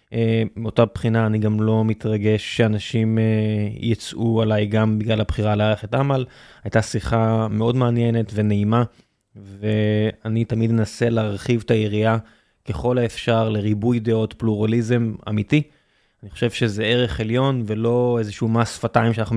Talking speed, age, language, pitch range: 125 wpm, 20-39, Hebrew, 110-120 Hz